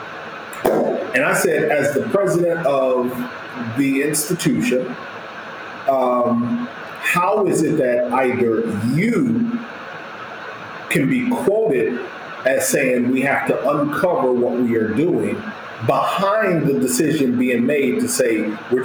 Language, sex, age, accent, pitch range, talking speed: English, male, 40-59, American, 125-175 Hz, 120 wpm